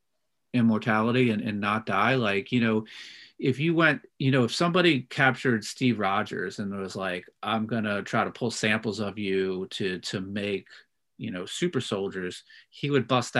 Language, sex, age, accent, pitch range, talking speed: English, male, 40-59, American, 100-125 Hz, 175 wpm